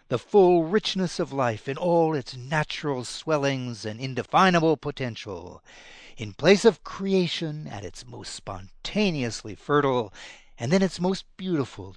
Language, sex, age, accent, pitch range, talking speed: English, male, 60-79, American, 120-165 Hz, 135 wpm